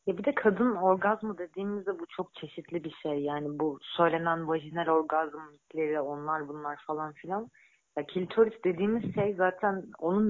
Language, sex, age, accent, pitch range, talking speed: Turkish, female, 30-49, native, 155-200 Hz, 150 wpm